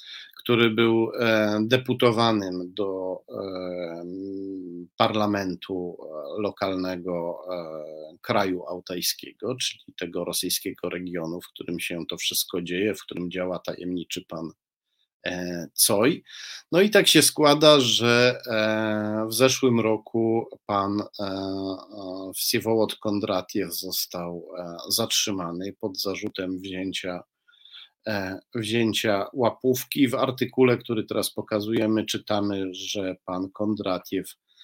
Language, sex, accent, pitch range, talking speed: Polish, male, native, 95-120 Hz, 90 wpm